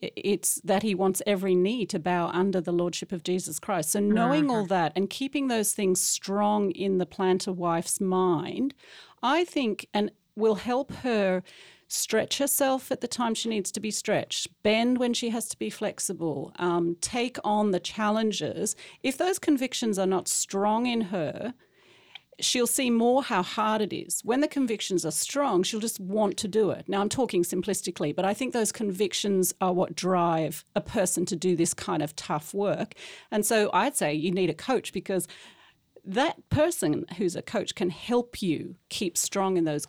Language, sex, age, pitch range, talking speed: English, female, 40-59, 175-220 Hz, 185 wpm